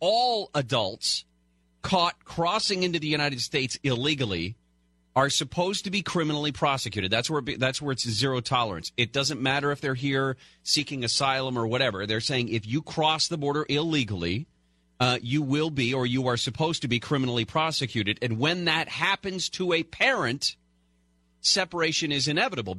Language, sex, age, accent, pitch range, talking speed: English, male, 40-59, American, 110-150 Hz, 165 wpm